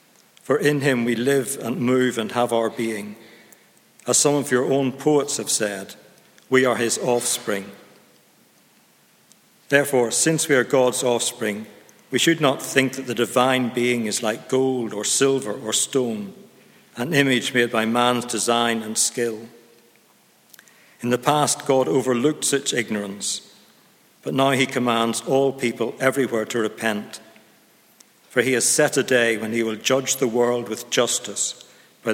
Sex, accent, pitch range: male, British, 110-135 Hz